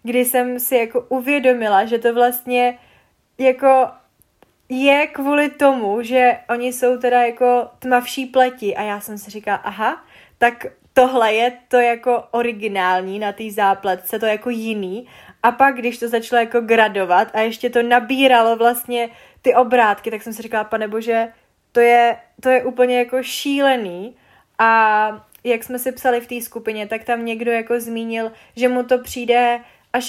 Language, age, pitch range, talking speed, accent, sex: Czech, 20-39, 225-255 Hz, 165 wpm, native, female